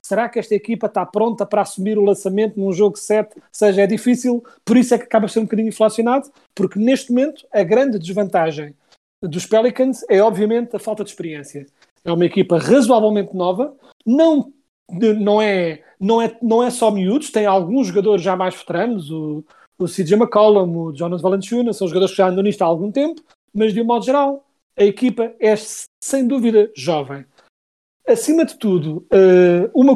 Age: 40-59